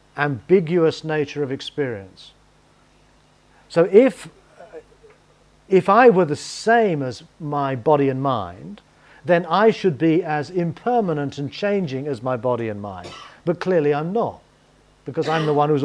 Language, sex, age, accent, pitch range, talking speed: English, male, 40-59, British, 140-180 Hz, 145 wpm